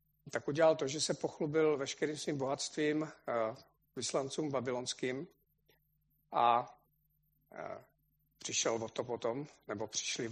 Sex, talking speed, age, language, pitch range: male, 100 wpm, 50-69, Czech, 145-165 Hz